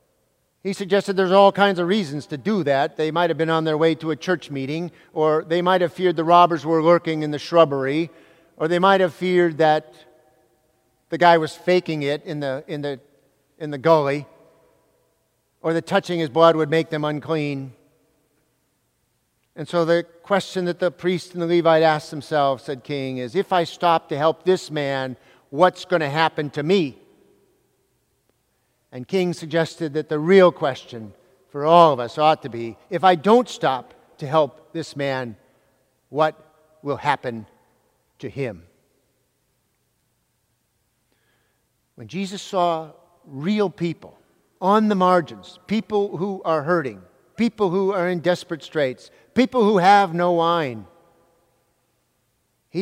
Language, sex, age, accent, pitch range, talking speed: English, male, 50-69, American, 145-180 Hz, 160 wpm